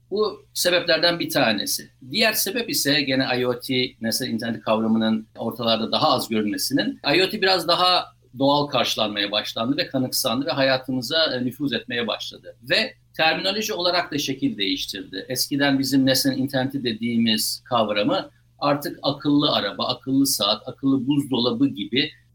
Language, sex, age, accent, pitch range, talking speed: Turkish, male, 50-69, native, 125-165 Hz, 130 wpm